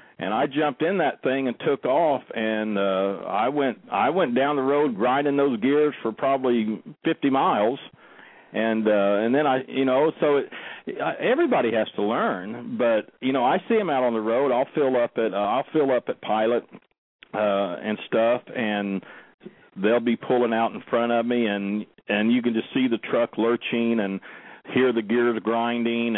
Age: 50-69